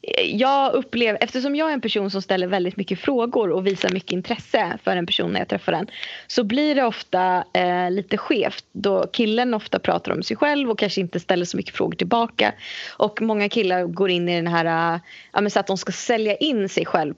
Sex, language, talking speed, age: female, Swedish, 220 wpm, 20-39